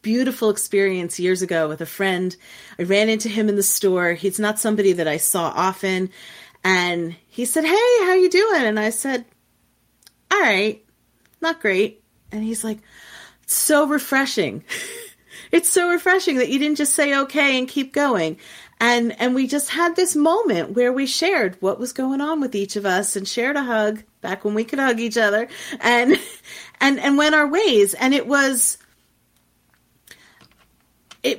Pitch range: 185-265 Hz